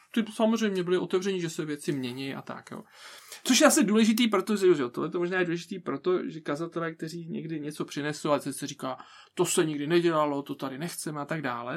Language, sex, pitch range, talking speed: Czech, male, 150-185 Hz, 210 wpm